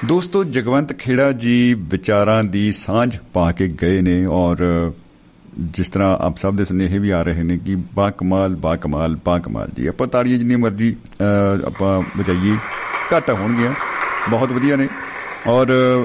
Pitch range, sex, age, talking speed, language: 90-115 Hz, male, 50-69, 155 wpm, Punjabi